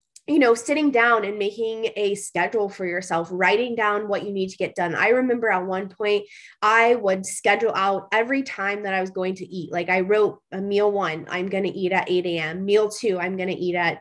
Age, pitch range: 20-39, 175-210 Hz